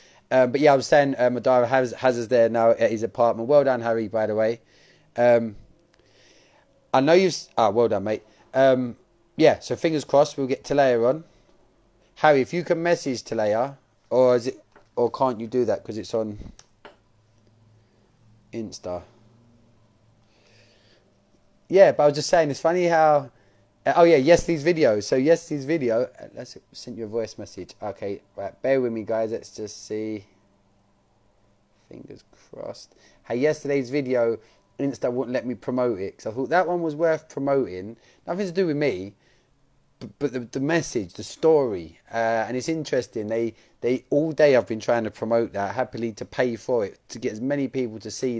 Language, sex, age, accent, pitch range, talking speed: English, male, 20-39, British, 110-140 Hz, 185 wpm